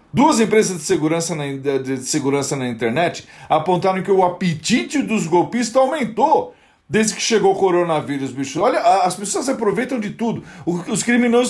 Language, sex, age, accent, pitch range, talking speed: Portuguese, male, 40-59, Brazilian, 160-230 Hz, 155 wpm